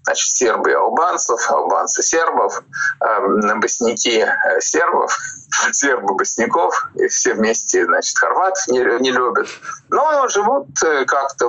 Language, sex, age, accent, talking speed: Russian, male, 20-39, native, 95 wpm